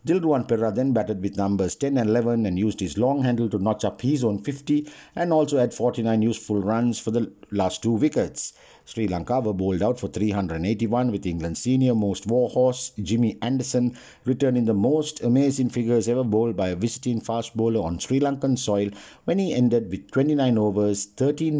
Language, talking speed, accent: English, 185 wpm, Indian